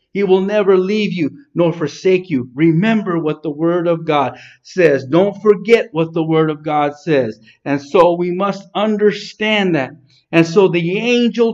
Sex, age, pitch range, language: male, 50-69, 145-215 Hz, English